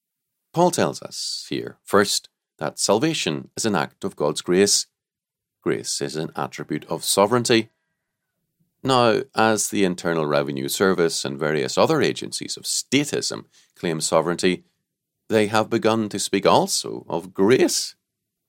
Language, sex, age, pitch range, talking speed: English, male, 40-59, 80-115 Hz, 135 wpm